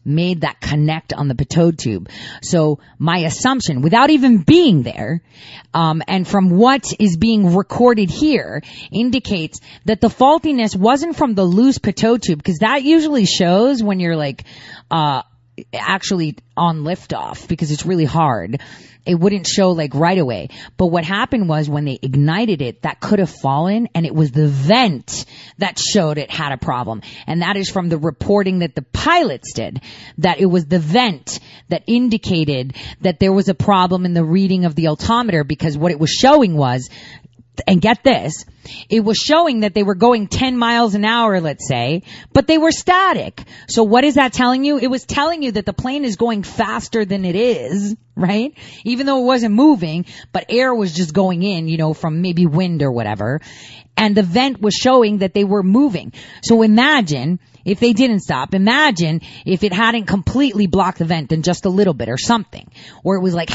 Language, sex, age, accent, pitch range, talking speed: English, female, 30-49, American, 155-225 Hz, 190 wpm